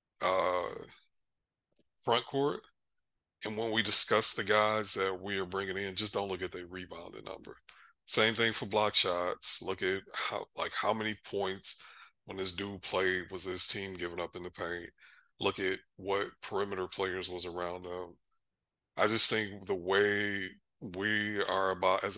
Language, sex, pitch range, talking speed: English, male, 95-105 Hz, 170 wpm